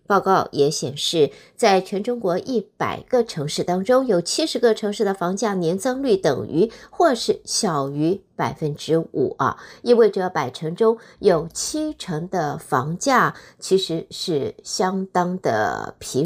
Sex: female